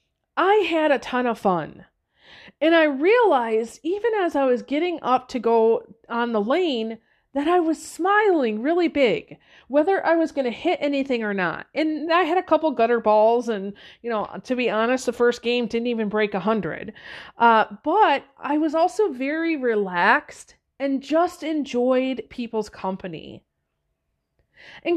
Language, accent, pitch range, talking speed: English, American, 220-315 Hz, 165 wpm